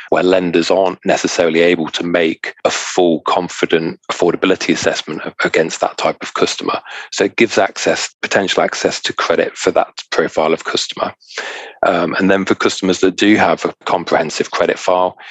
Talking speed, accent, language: 165 wpm, British, English